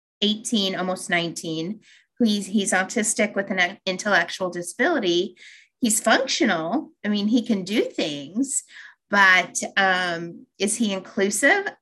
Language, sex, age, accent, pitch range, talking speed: English, female, 30-49, American, 185-240 Hz, 120 wpm